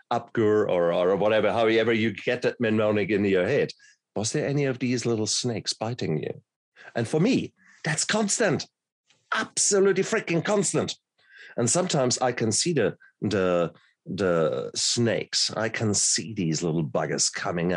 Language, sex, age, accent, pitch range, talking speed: English, male, 50-69, German, 85-115 Hz, 150 wpm